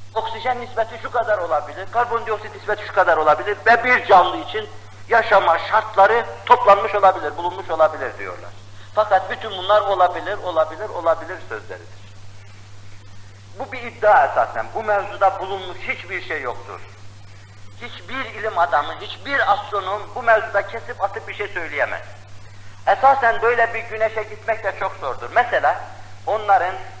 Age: 50-69